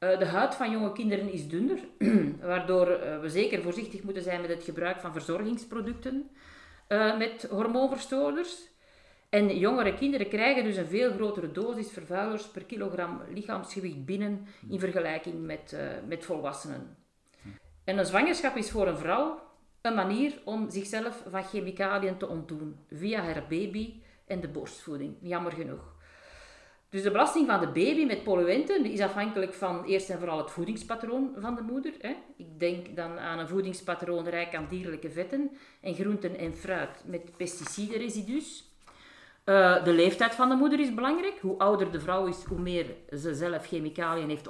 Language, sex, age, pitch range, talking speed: Dutch, female, 50-69, 175-225 Hz, 155 wpm